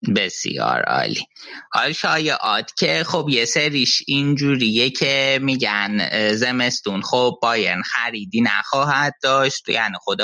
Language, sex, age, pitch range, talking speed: Persian, male, 20-39, 100-125 Hz, 110 wpm